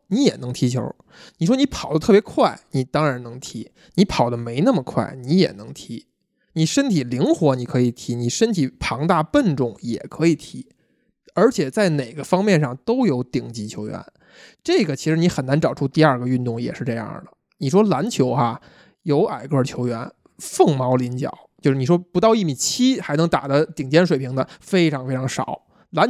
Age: 20-39